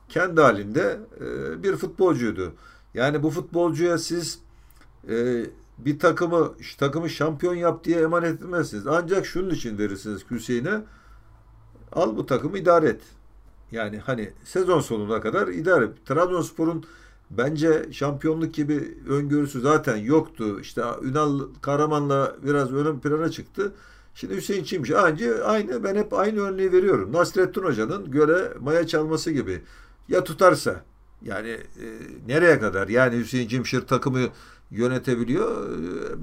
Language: Turkish